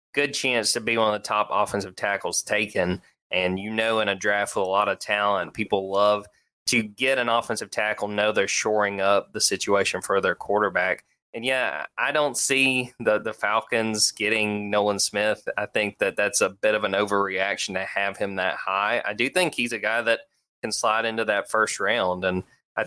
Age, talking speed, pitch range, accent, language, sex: 20-39, 205 wpm, 100-115 Hz, American, English, male